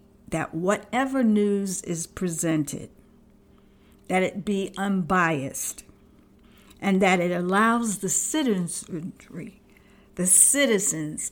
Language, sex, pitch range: English, female, 170-205 Hz